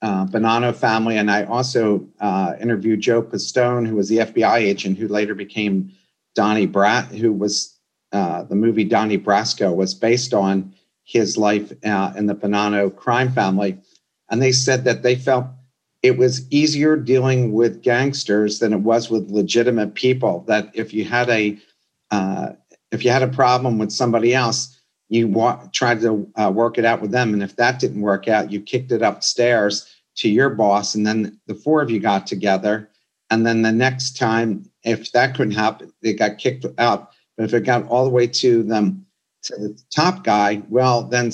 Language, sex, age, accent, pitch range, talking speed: English, male, 50-69, American, 105-125 Hz, 185 wpm